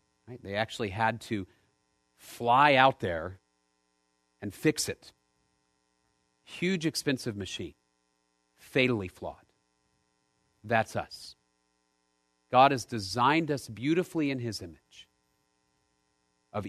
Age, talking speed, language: 40-59, 95 wpm, English